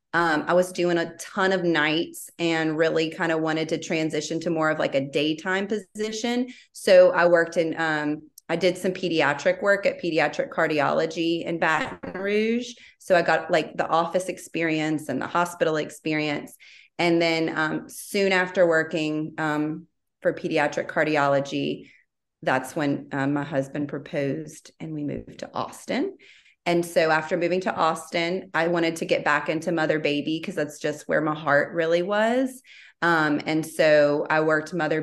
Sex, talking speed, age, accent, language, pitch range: female, 170 wpm, 30-49, American, English, 155-180 Hz